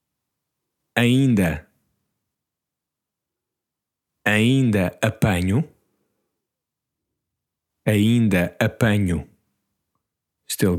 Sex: male